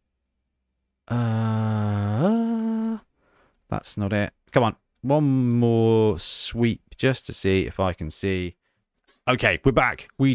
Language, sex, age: English, male, 30-49